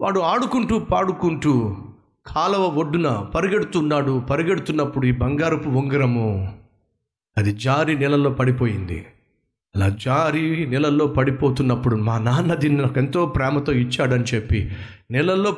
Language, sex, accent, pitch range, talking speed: Telugu, male, native, 110-145 Hz, 100 wpm